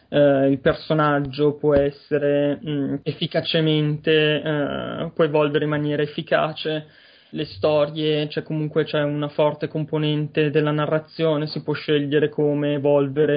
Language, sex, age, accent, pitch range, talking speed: Italian, male, 20-39, native, 145-160 Hz, 130 wpm